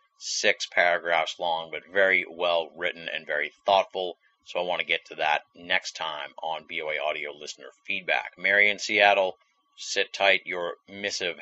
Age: 30-49